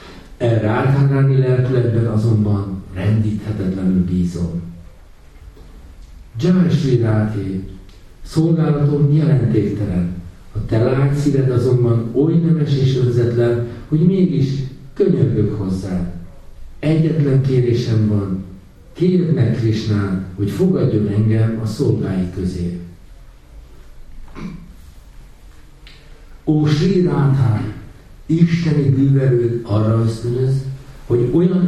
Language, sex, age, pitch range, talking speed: Hungarian, male, 60-79, 95-135 Hz, 75 wpm